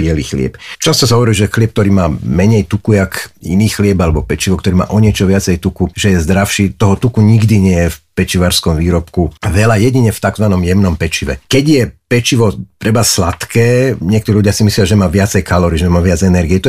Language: Slovak